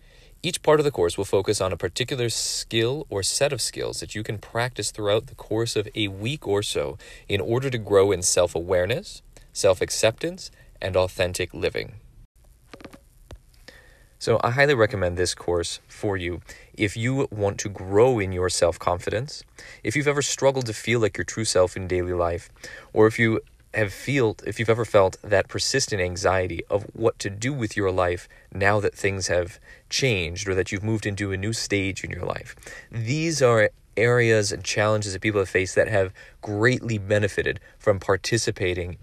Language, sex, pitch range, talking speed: English, male, 95-115 Hz, 180 wpm